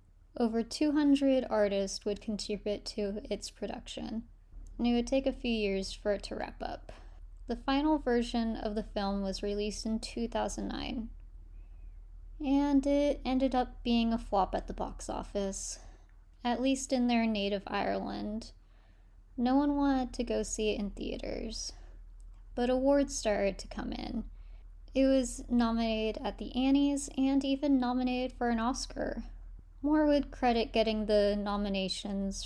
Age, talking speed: 10-29, 150 wpm